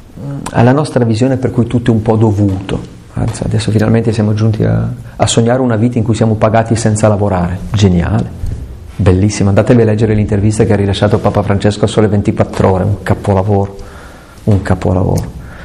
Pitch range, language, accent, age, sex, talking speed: 100-125 Hz, Italian, native, 40-59, male, 170 wpm